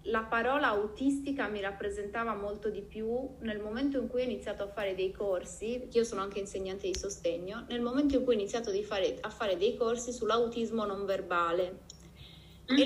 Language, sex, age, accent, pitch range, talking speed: Italian, female, 20-39, native, 195-235 Hz, 185 wpm